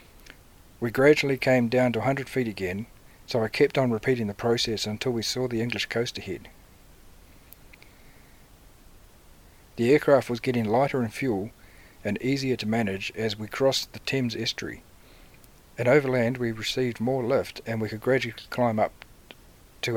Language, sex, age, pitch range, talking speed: English, male, 50-69, 105-125 Hz, 155 wpm